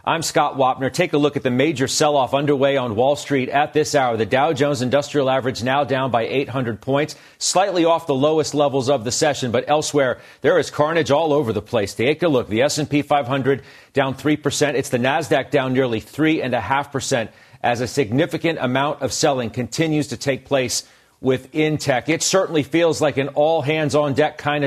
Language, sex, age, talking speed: English, male, 40-59, 210 wpm